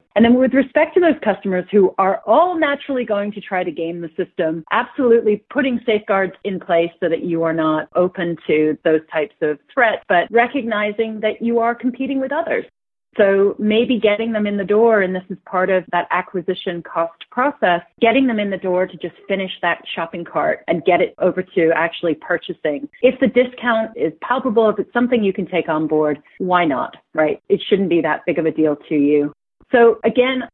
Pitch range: 165-215 Hz